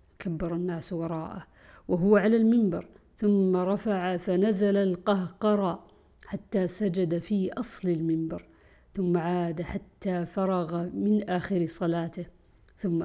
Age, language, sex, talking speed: 50-69, Arabic, female, 105 wpm